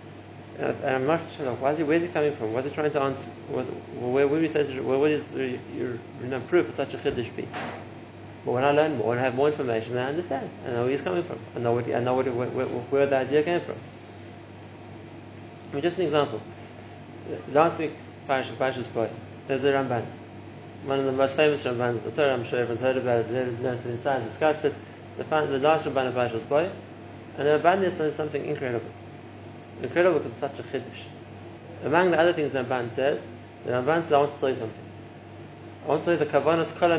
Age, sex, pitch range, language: 30-49, male, 115-145 Hz, English